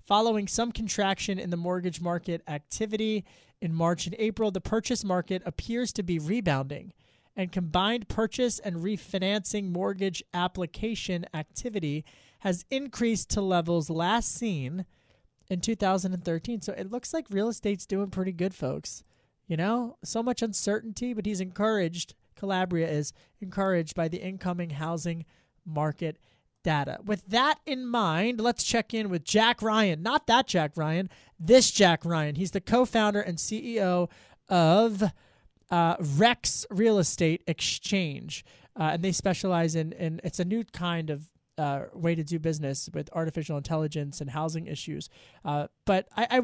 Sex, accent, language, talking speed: male, American, English, 150 wpm